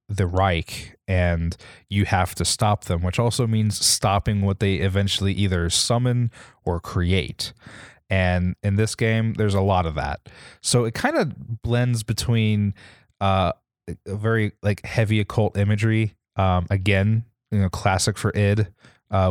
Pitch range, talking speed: 90-110 Hz, 150 wpm